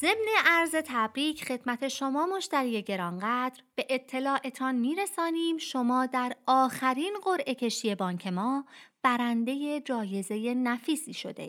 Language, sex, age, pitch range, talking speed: Persian, female, 30-49, 220-305 Hz, 110 wpm